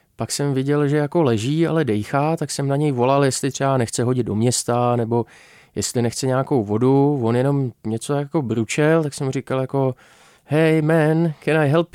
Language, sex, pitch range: Czech, male, 120-150 Hz